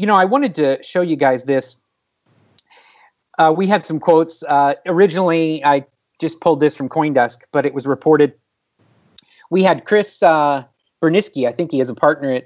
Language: English